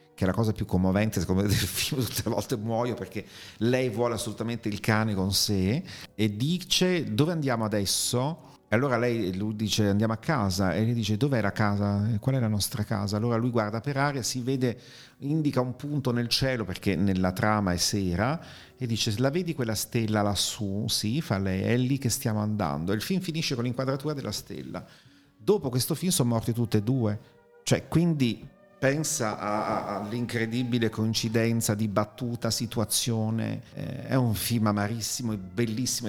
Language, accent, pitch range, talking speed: Italian, native, 105-125 Hz, 185 wpm